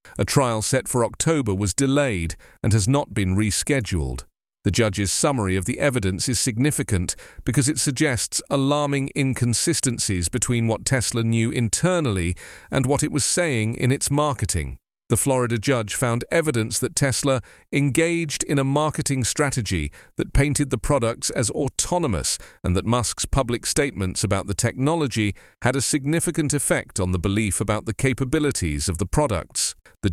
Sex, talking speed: male, 155 wpm